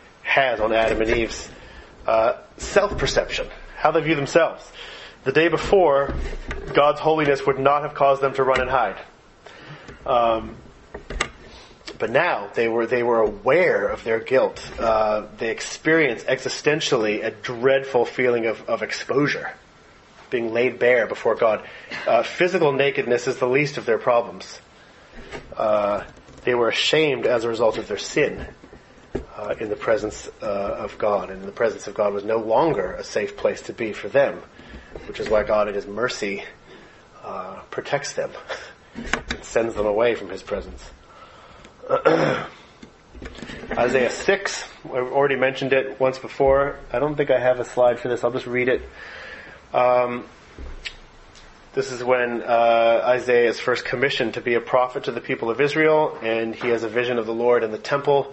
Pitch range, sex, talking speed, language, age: 115-140 Hz, male, 165 wpm, English, 30-49